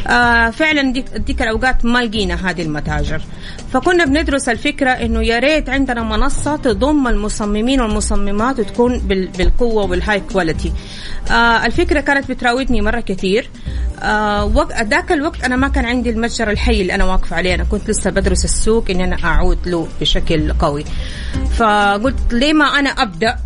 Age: 30-49